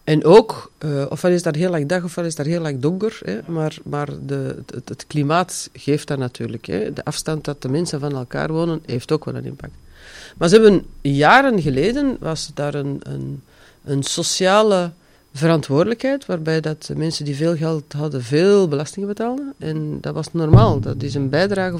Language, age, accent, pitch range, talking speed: Dutch, 40-59, Dutch, 145-180 Hz, 195 wpm